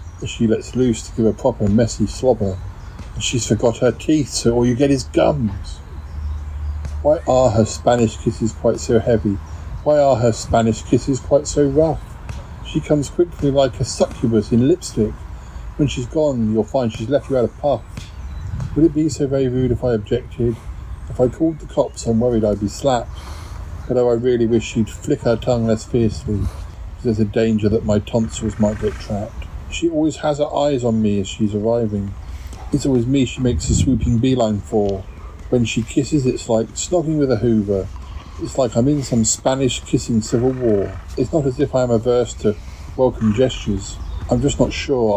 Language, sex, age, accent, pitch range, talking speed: English, male, 50-69, British, 95-130 Hz, 190 wpm